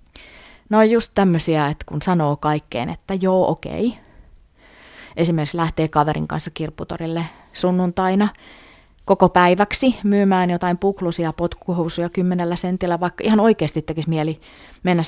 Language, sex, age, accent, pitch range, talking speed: Finnish, female, 30-49, native, 155-195 Hz, 120 wpm